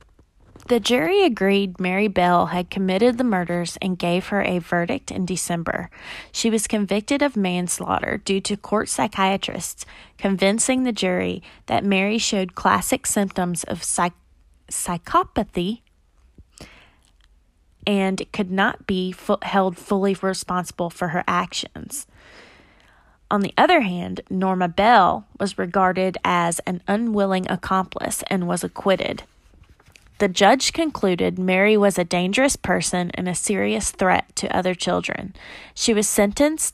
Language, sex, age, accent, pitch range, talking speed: English, female, 20-39, American, 180-225 Hz, 125 wpm